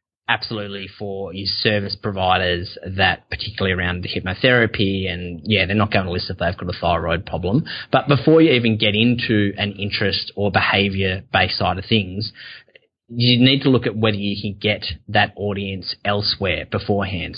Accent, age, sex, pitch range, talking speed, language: Australian, 20-39, male, 95-115 Hz, 170 wpm, English